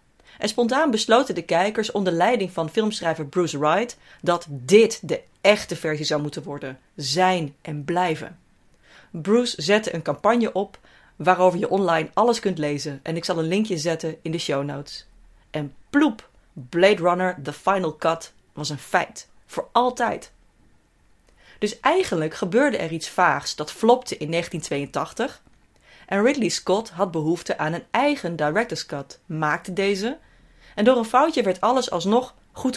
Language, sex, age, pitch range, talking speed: Dutch, female, 30-49, 155-210 Hz, 155 wpm